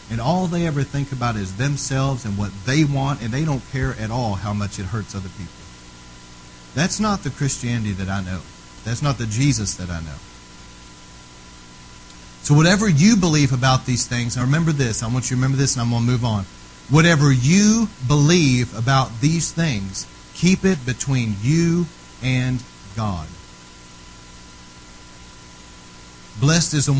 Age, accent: 40-59, American